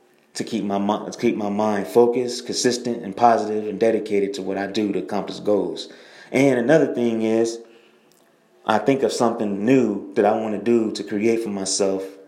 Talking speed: 175 wpm